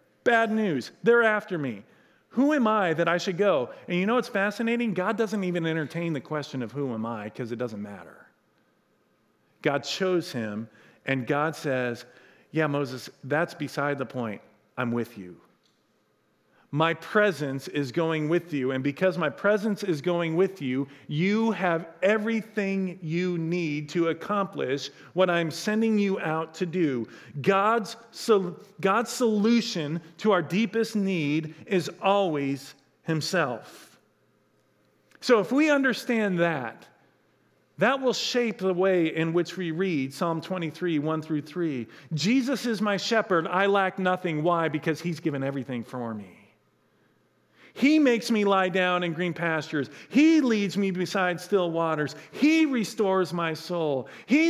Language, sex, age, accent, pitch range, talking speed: English, male, 40-59, American, 145-200 Hz, 150 wpm